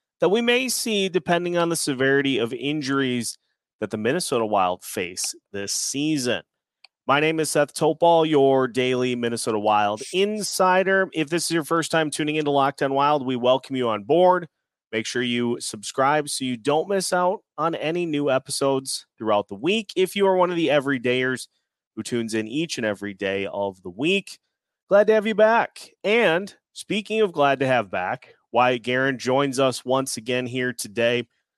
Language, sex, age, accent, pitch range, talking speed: English, male, 30-49, American, 120-165 Hz, 180 wpm